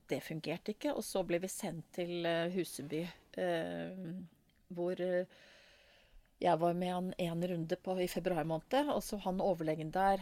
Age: 30-49